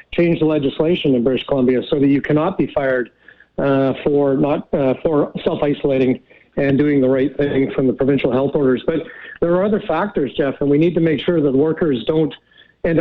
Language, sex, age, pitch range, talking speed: English, male, 50-69, 140-165 Hz, 205 wpm